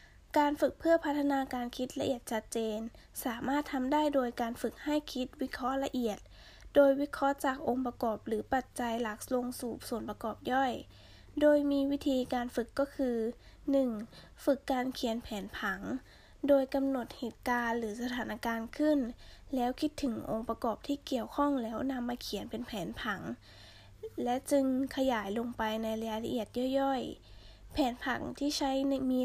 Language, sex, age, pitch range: Thai, female, 10-29, 230-275 Hz